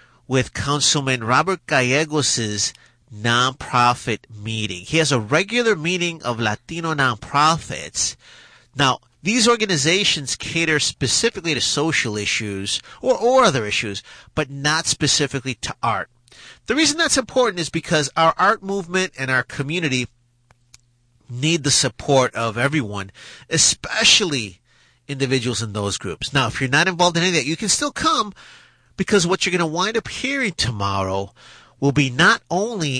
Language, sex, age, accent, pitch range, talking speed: English, male, 30-49, American, 120-165 Hz, 145 wpm